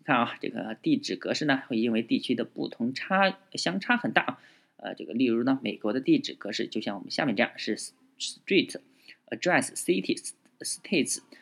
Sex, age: male, 20-39